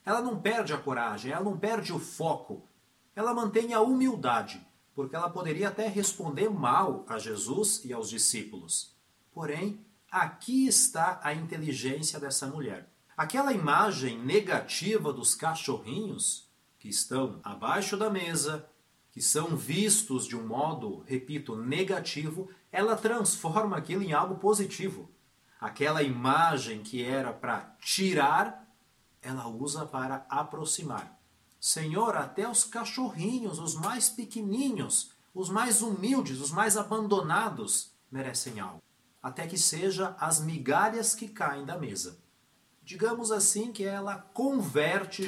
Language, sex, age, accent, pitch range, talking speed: Portuguese, male, 40-59, Brazilian, 140-215 Hz, 125 wpm